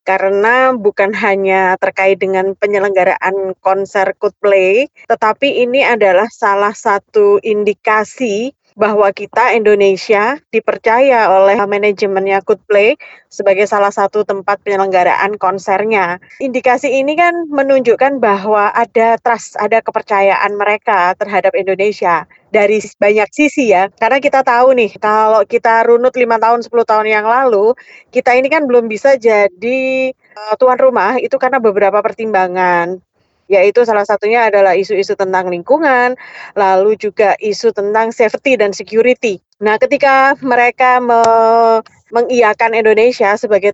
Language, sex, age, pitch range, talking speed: Indonesian, female, 20-39, 200-245 Hz, 125 wpm